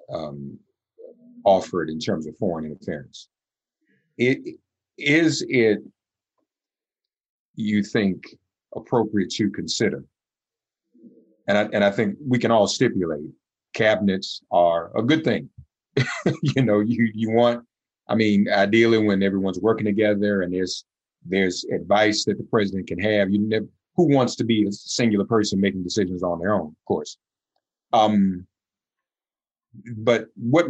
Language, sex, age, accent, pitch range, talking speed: English, male, 50-69, American, 100-120 Hz, 135 wpm